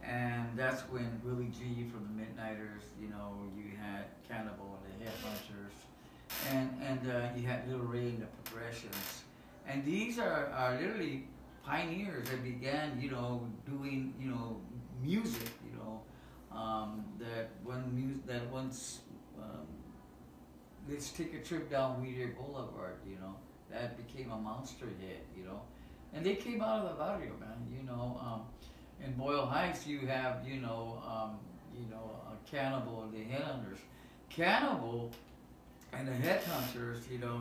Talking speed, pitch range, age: 155 wpm, 115-140 Hz, 60-79